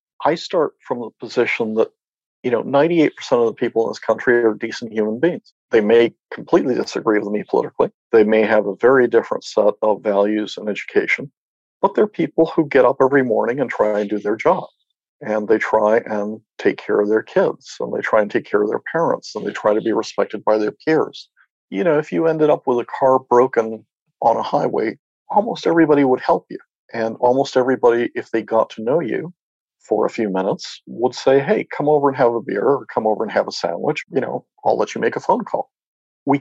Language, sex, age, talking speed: English, male, 50-69, 220 wpm